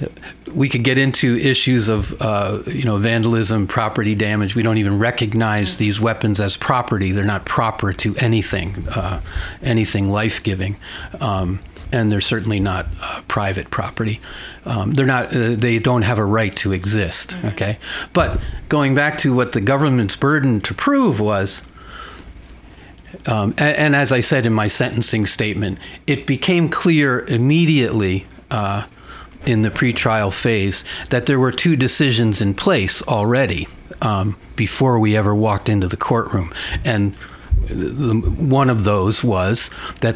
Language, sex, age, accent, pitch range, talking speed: English, male, 40-59, American, 100-125 Hz, 150 wpm